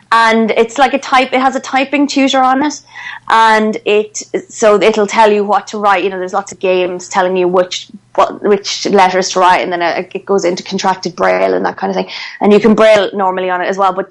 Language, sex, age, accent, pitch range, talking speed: English, female, 20-39, Irish, 190-235 Hz, 245 wpm